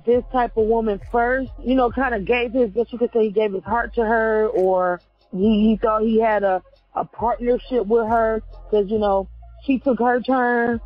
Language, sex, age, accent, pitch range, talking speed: English, female, 30-49, American, 215-255 Hz, 215 wpm